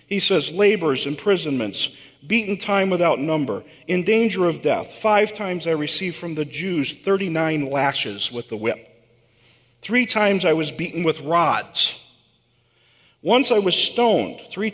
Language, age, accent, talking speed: English, 40-59, American, 145 wpm